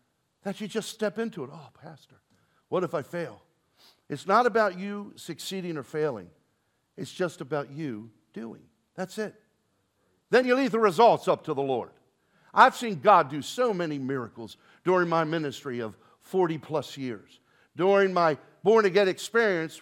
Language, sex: English, male